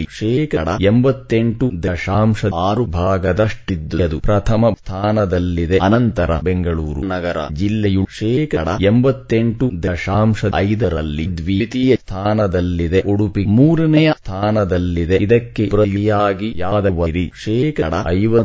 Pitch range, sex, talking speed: 95-110 Hz, male, 85 wpm